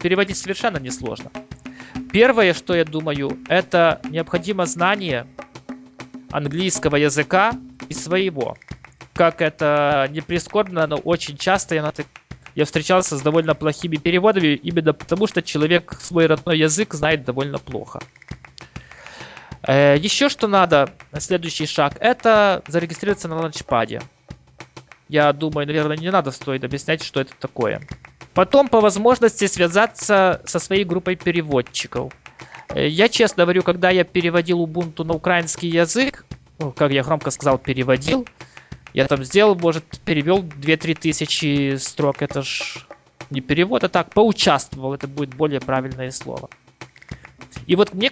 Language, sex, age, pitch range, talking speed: Russian, male, 20-39, 145-185 Hz, 130 wpm